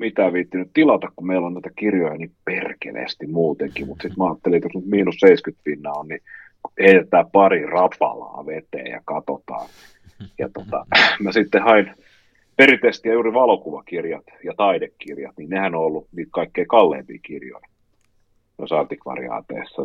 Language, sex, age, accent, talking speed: Finnish, male, 30-49, native, 145 wpm